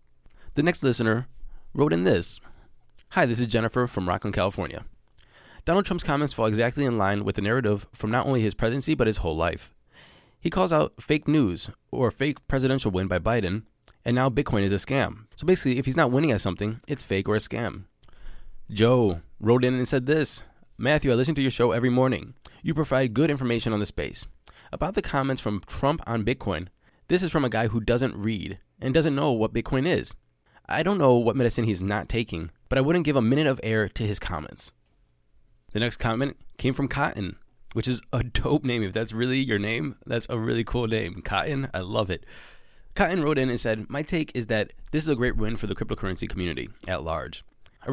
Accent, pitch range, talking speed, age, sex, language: American, 105-135 Hz, 210 wpm, 20-39, male, English